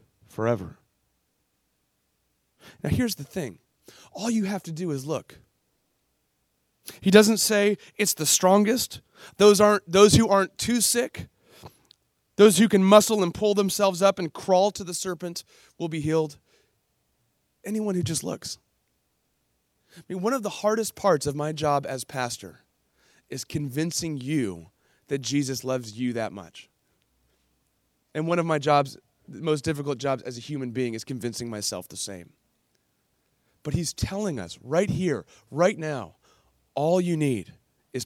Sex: male